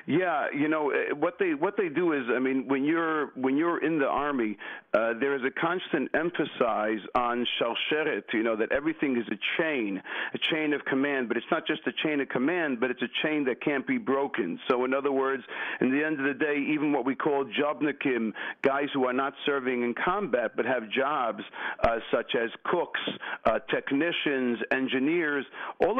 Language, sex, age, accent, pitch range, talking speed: English, male, 50-69, American, 125-150 Hz, 200 wpm